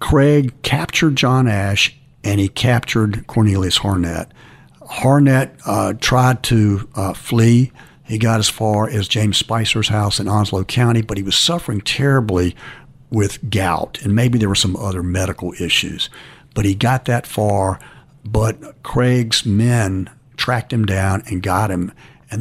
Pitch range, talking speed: 100-130 Hz, 150 wpm